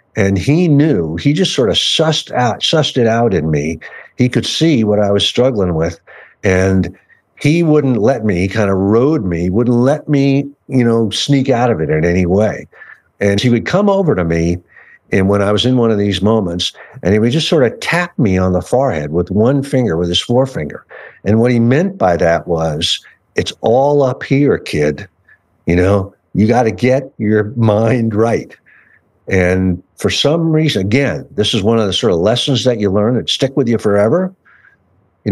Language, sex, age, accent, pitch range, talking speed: English, male, 60-79, American, 95-135 Hz, 200 wpm